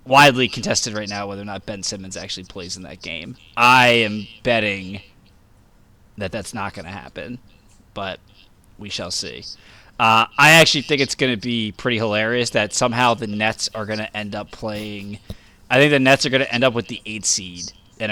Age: 20-39